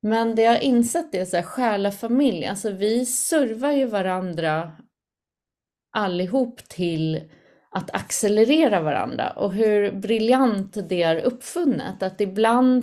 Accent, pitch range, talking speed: native, 180-235 Hz, 125 wpm